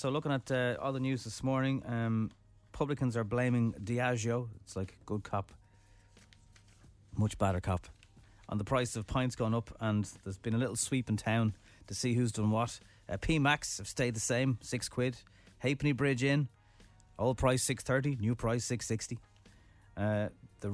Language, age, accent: English, 30-49, Irish